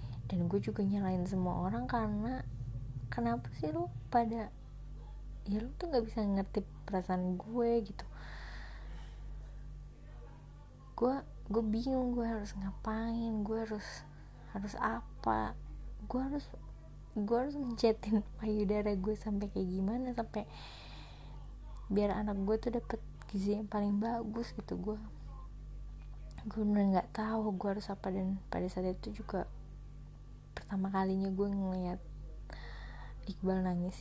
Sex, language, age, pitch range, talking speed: female, Indonesian, 20-39, 175-215 Hz, 120 wpm